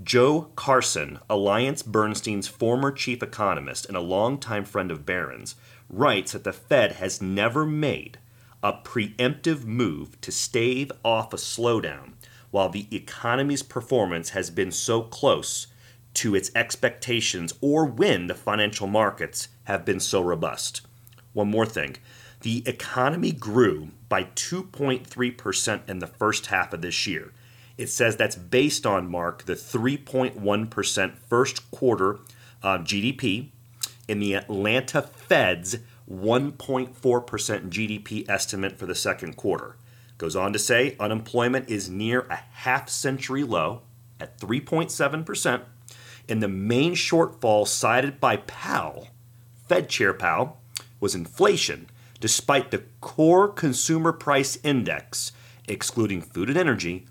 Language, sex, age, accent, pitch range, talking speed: English, male, 30-49, American, 105-130 Hz, 125 wpm